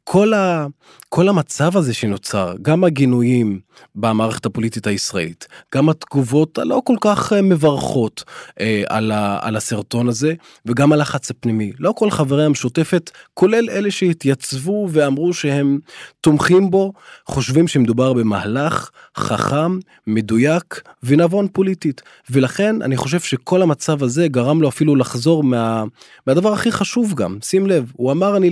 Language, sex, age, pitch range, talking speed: Hebrew, male, 20-39, 115-165 Hz, 135 wpm